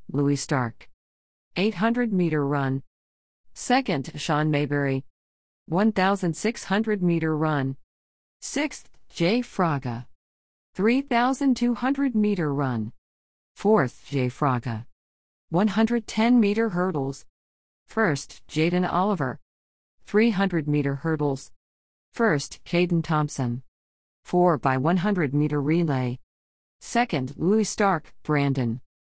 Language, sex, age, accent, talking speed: English, female, 40-59, American, 85 wpm